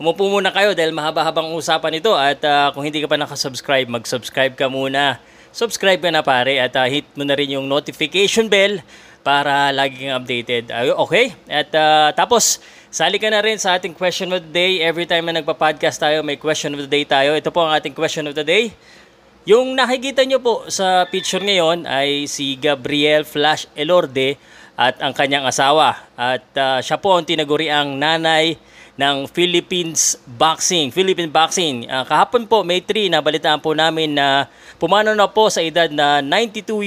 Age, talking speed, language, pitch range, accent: 20-39, 180 wpm, Filipino, 140-175 Hz, native